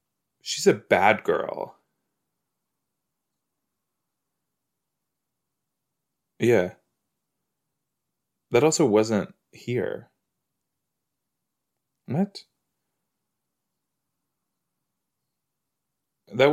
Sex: male